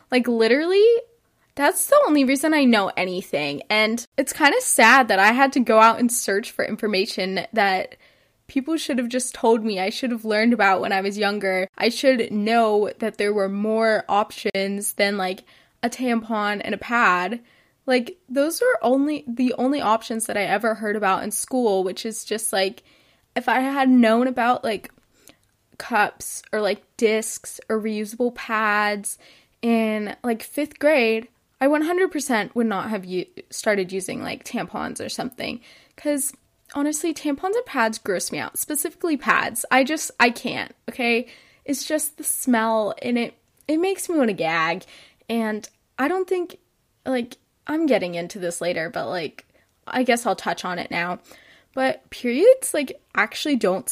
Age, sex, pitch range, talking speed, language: 10-29, female, 205-270 Hz, 170 wpm, English